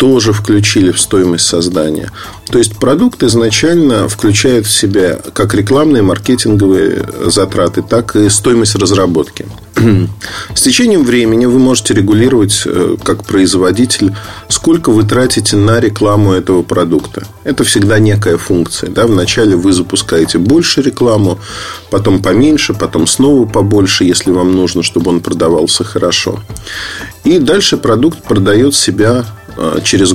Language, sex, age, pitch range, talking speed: Russian, male, 40-59, 95-115 Hz, 125 wpm